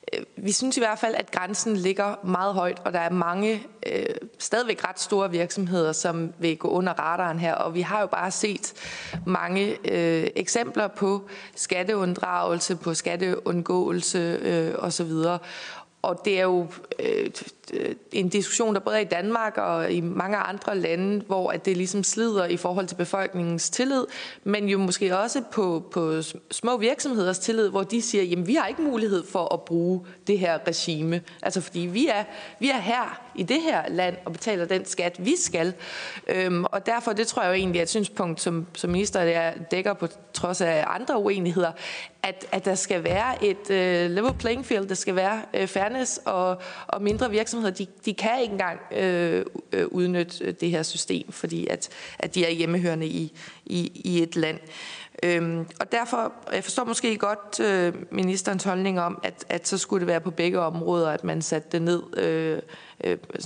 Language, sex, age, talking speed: Danish, female, 20-39, 180 wpm